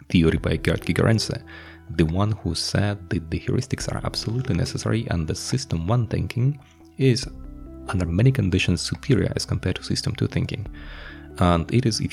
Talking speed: 170 wpm